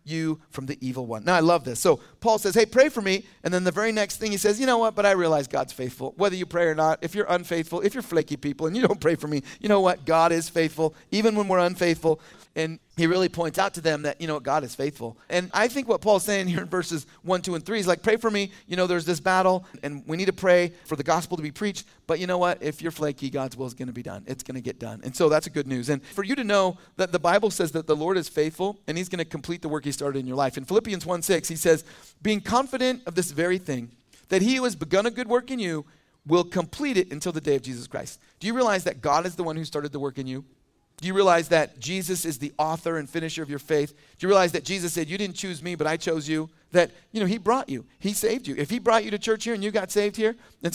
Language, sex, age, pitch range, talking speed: English, male, 40-59, 145-190 Hz, 295 wpm